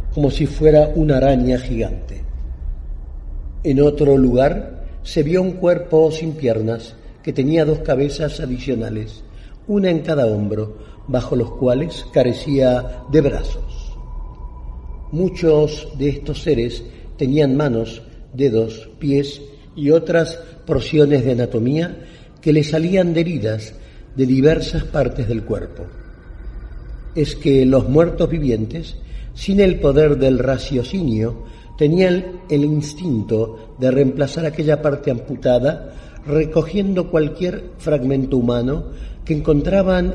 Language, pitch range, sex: Spanish, 110-155 Hz, male